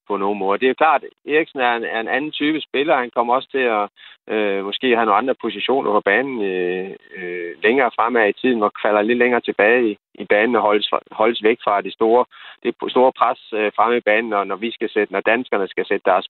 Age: 30-49